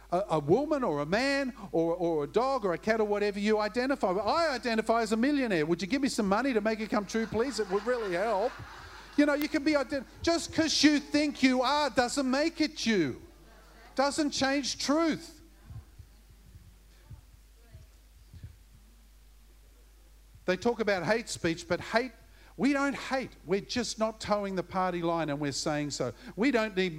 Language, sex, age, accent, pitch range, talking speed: English, male, 50-69, Australian, 185-270 Hz, 180 wpm